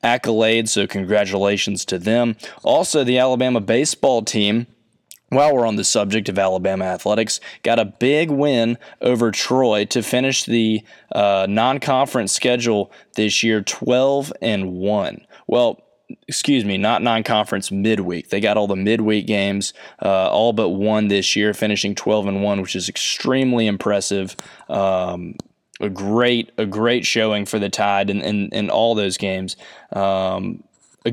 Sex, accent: male, American